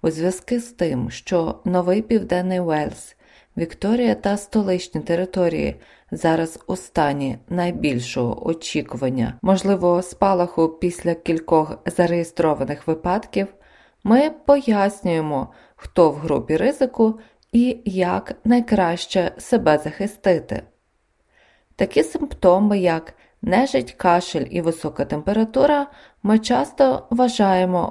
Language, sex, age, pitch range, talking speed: Ukrainian, female, 20-39, 165-225 Hz, 95 wpm